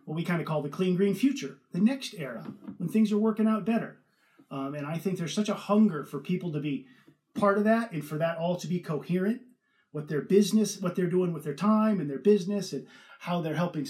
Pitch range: 155-215 Hz